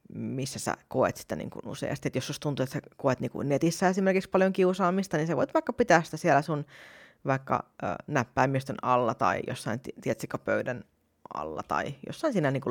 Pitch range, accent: 135-175 Hz, native